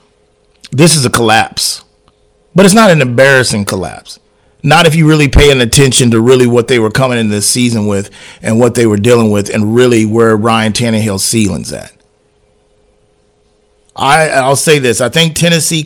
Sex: male